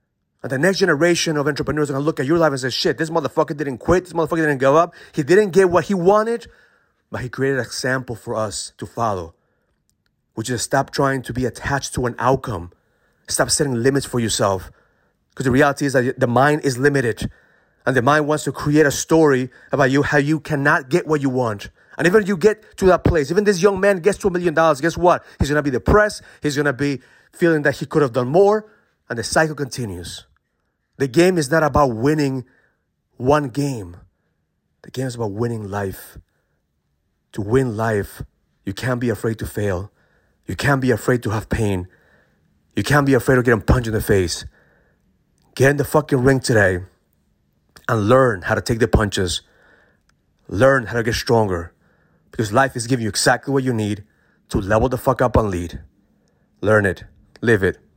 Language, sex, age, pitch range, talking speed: English, male, 30-49, 115-150 Hz, 205 wpm